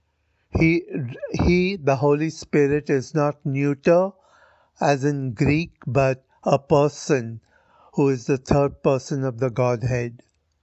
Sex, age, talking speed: male, 60-79, 125 wpm